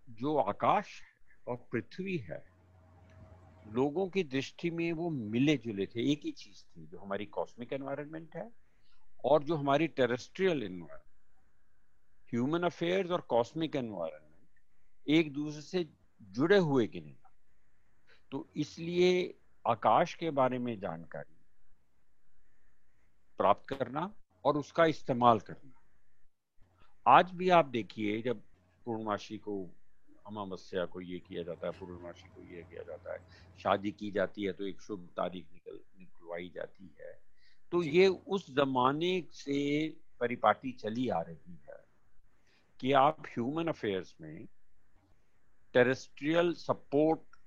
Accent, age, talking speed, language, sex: native, 50-69, 120 wpm, Hindi, male